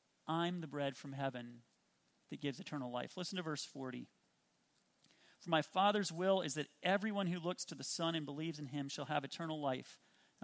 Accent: American